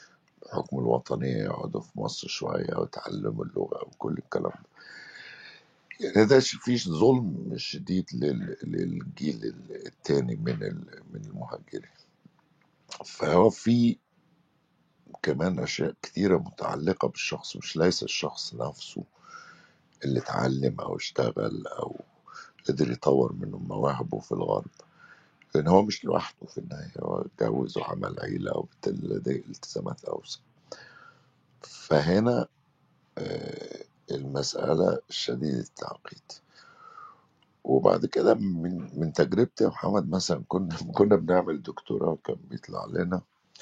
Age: 60-79